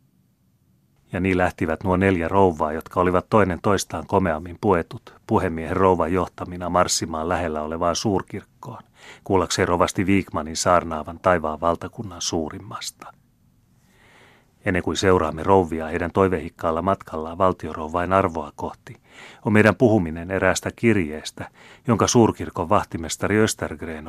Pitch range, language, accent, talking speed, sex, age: 85-100 Hz, Finnish, native, 110 wpm, male, 30-49